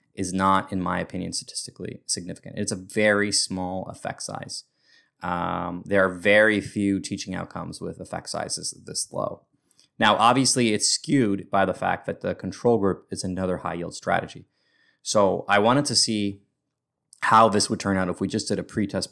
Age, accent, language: 20-39, American, English